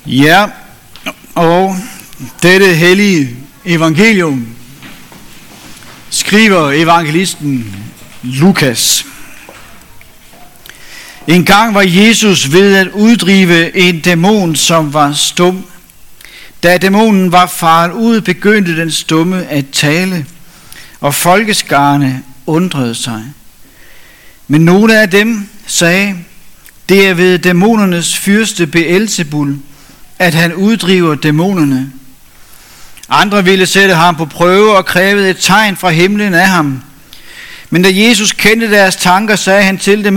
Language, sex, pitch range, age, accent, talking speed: Danish, male, 165-200 Hz, 60-79, native, 105 wpm